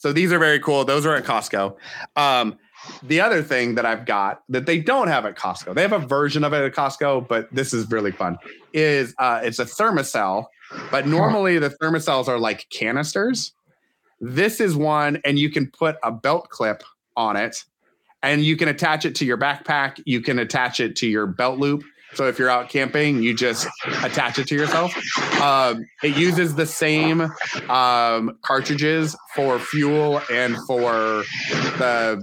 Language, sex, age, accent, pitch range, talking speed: English, male, 30-49, American, 125-150 Hz, 180 wpm